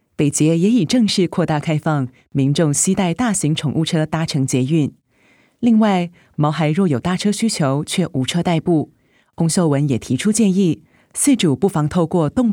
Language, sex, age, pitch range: Chinese, female, 30-49, 145-190 Hz